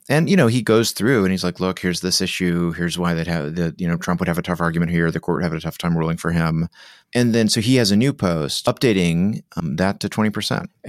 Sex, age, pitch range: male, 30-49, 85-110 Hz